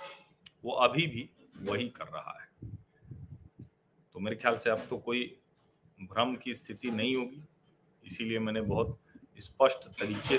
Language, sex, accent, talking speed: Hindi, male, native, 140 wpm